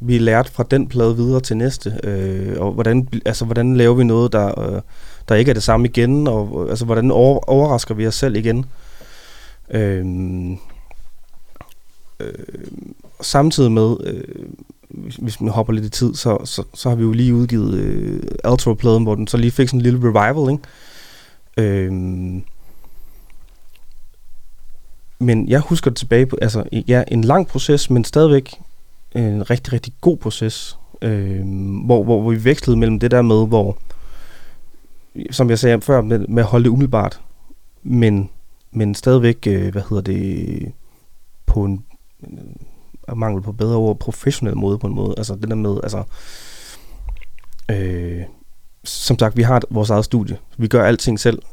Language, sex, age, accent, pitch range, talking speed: Danish, male, 30-49, native, 105-125 Hz, 165 wpm